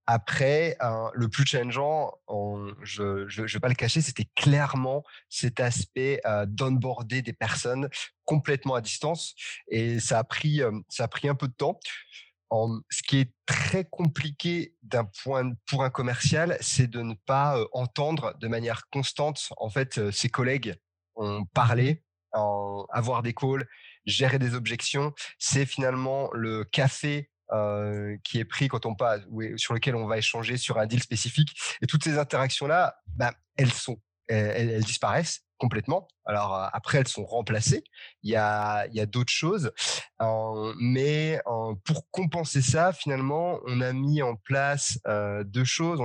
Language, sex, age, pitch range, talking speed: French, male, 30-49, 110-140 Hz, 160 wpm